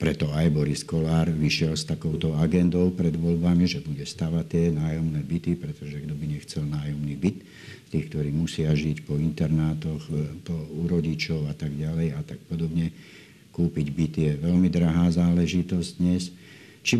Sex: male